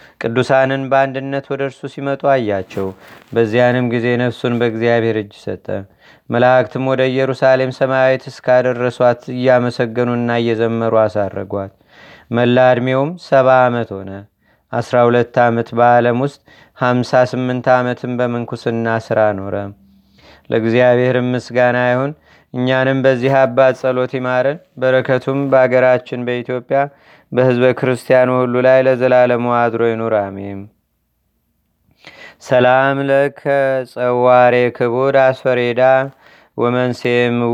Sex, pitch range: male, 120-135 Hz